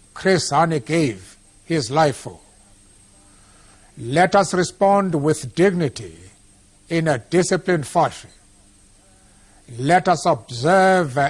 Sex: male